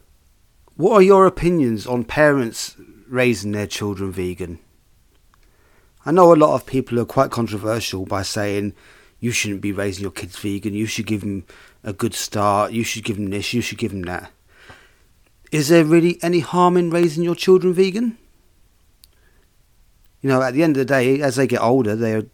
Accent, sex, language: British, male, English